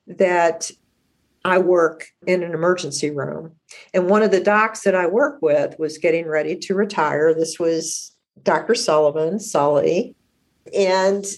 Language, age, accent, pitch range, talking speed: English, 50-69, American, 175-210 Hz, 140 wpm